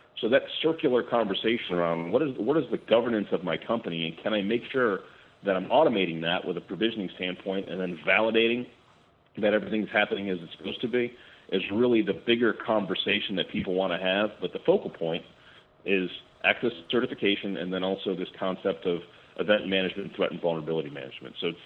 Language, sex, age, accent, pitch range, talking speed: English, male, 40-59, American, 85-105 Hz, 190 wpm